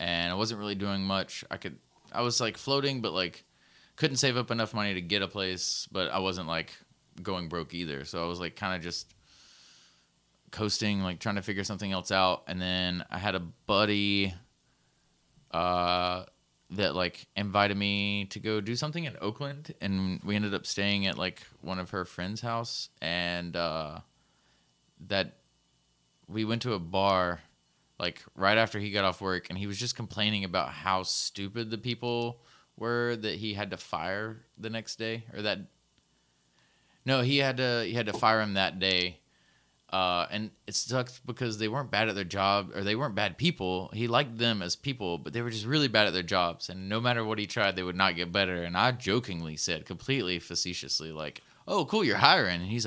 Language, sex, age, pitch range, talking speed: English, male, 20-39, 90-110 Hz, 200 wpm